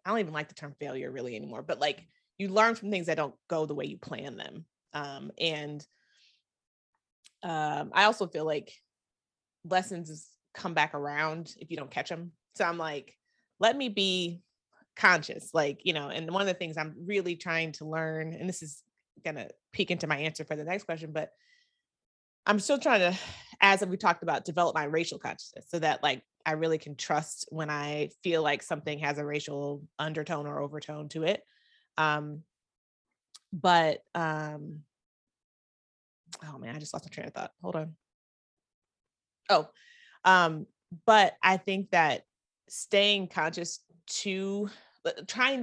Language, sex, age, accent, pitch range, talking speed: English, female, 20-39, American, 150-185 Hz, 170 wpm